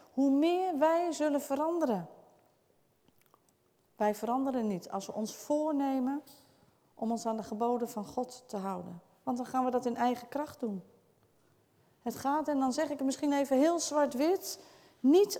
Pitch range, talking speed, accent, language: 230-295 Hz, 165 wpm, Dutch, Dutch